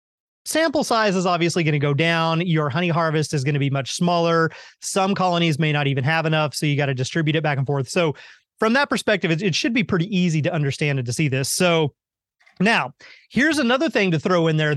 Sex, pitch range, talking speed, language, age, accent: male, 155-215 Hz, 235 wpm, English, 30-49, American